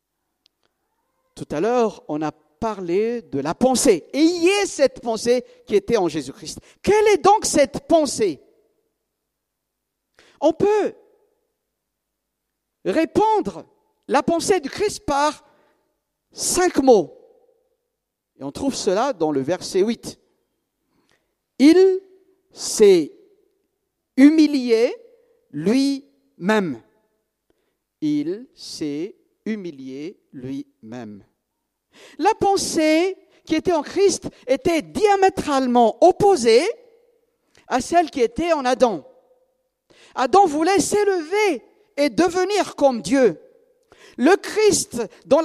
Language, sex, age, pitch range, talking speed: French, male, 60-79, 275-395 Hz, 100 wpm